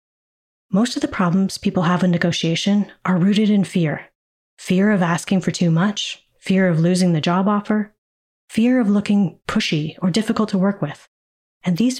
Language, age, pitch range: English, 30-49, 170-205 Hz